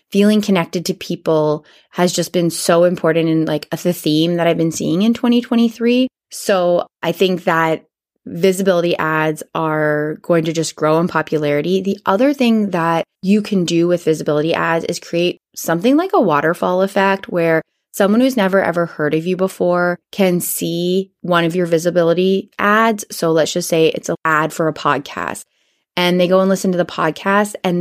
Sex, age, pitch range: female, 20-39, 165-205 Hz